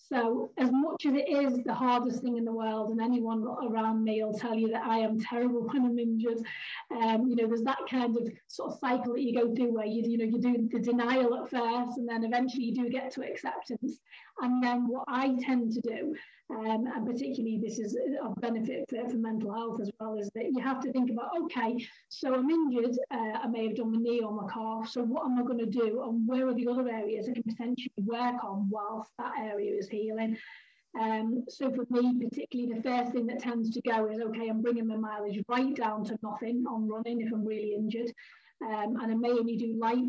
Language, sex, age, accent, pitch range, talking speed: English, female, 30-49, British, 225-250 Hz, 235 wpm